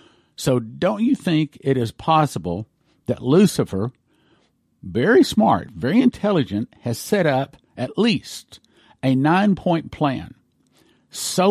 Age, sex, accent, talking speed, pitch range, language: 50-69, male, American, 115 wpm, 120-165 Hz, English